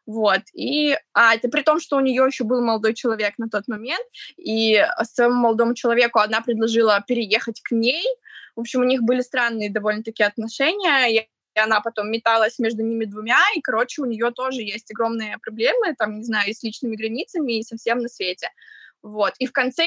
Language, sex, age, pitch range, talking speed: Russian, female, 20-39, 220-260 Hz, 190 wpm